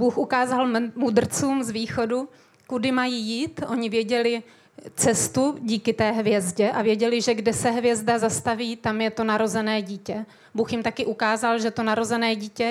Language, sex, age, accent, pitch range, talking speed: Czech, female, 30-49, native, 215-235 Hz, 160 wpm